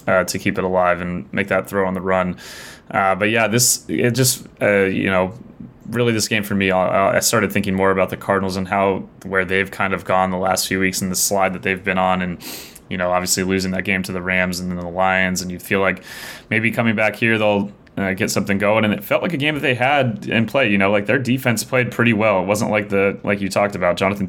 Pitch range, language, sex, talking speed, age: 95-105 Hz, English, male, 265 wpm, 20-39